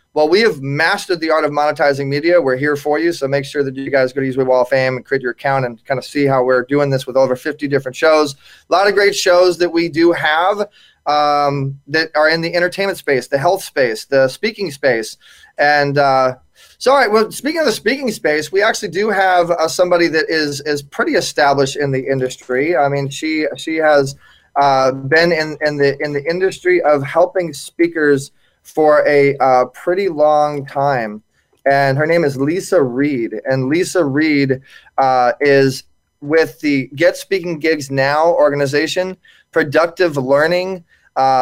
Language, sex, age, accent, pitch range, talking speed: English, male, 20-39, American, 135-170 Hz, 190 wpm